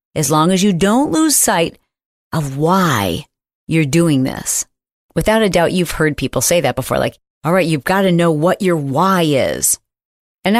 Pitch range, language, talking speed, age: 145-205 Hz, English, 185 wpm, 40-59